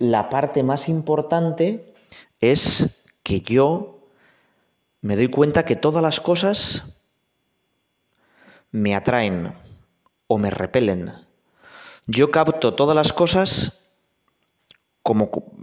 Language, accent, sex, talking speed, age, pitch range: Spanish, Spanish, male, 95 wpm, 30-49, 105-140 Hz